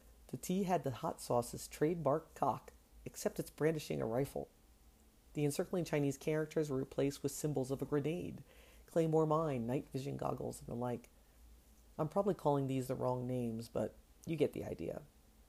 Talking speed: 170 wpm